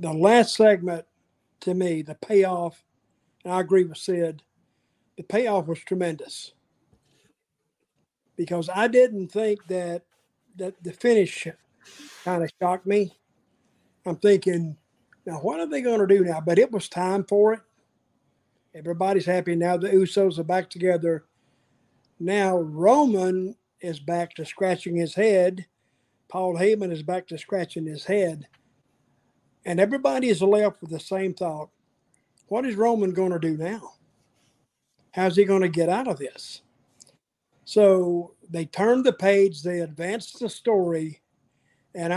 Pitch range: 165-200 Hz